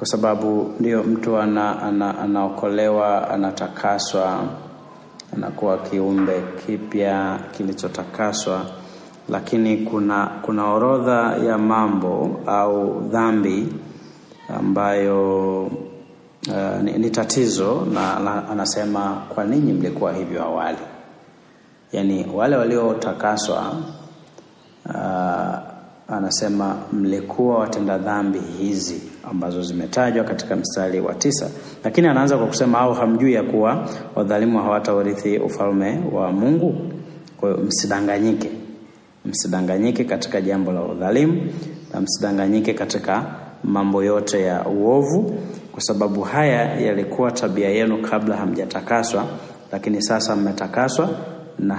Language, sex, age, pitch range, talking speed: Swahili, male, 30-49, 100-115 Hz, 105 wpm